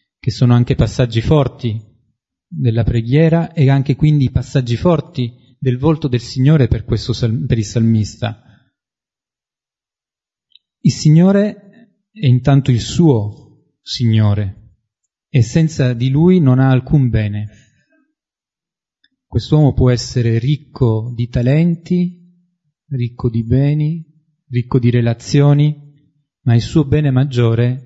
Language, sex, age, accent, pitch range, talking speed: Italian, male, 30-49, native, 120-155 Hz, 110 wpm